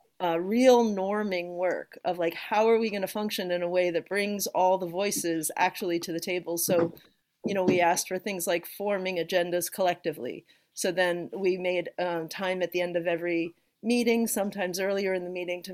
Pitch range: 175-215 Hz